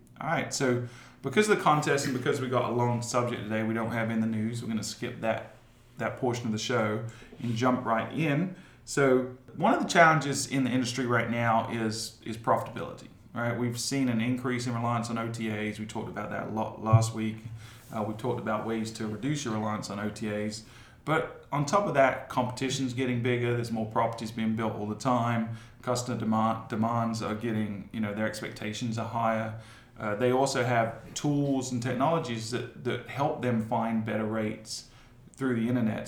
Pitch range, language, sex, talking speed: 110-130 Hz, English, male, 205 wpm